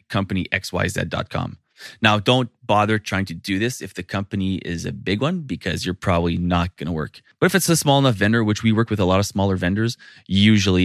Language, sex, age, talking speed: English, male, 20-39, 215 wpm